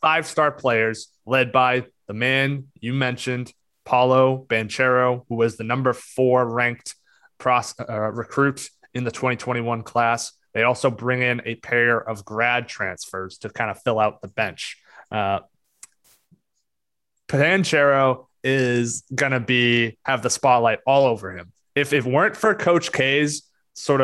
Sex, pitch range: male, 120-145 Hz